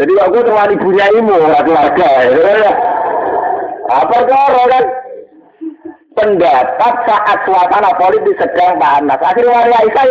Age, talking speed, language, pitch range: 50-69, 120 wpm, Indonesian, 240-370 Hz